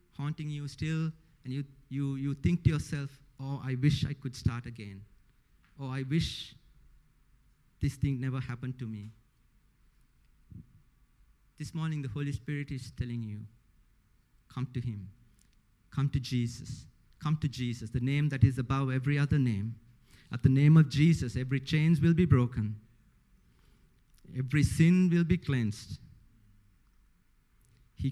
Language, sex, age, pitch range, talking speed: English, male, 50-69, 125-150 Hz, 140 wpm